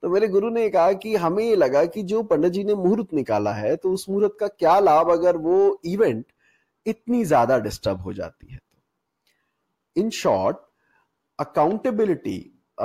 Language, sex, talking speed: Hindi, male, 165 wpm